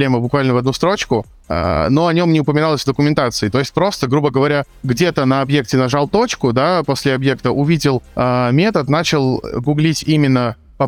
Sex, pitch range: male, 125-155 Hz